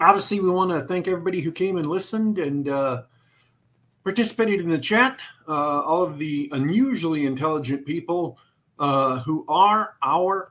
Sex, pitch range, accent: male, 140-220 Hz, American